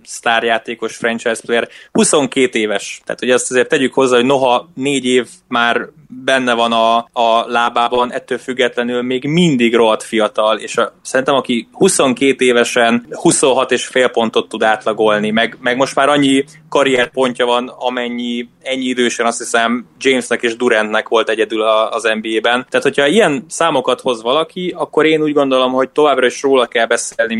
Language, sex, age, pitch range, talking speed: Hungarian, male, 20-39, 115-135 Hz, 160 wpm